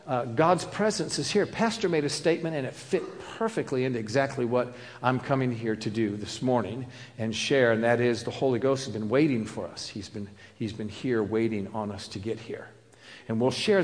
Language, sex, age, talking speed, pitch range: English, male, 50-69, 215 wpm, 115-145 Hz